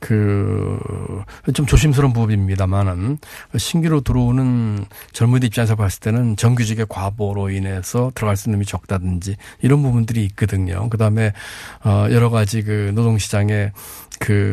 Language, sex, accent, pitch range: Korean, male, native, 105-135 Hz